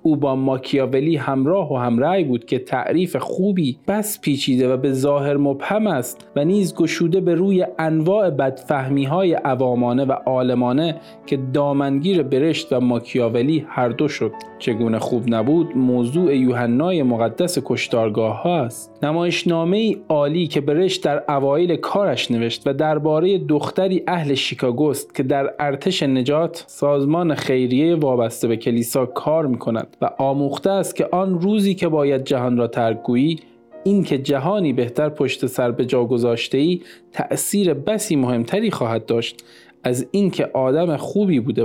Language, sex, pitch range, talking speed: Persian, male, 130-170 Hz, 145 wpm